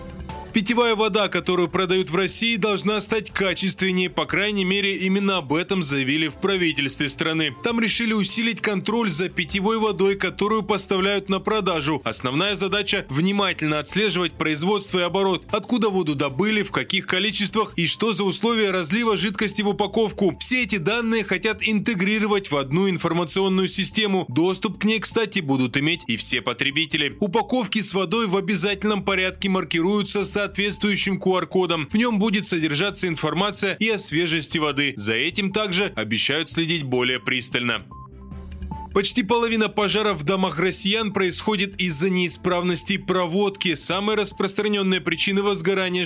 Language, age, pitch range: Russian, 20-39, 160-205 Hz